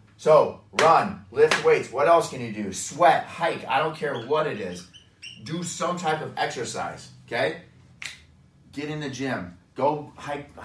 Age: 30-49